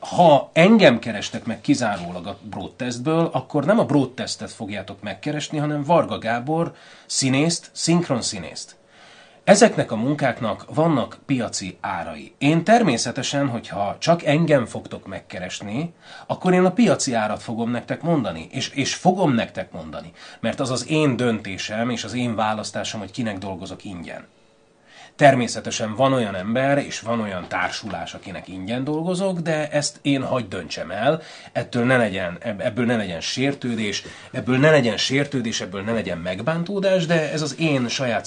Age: 30-49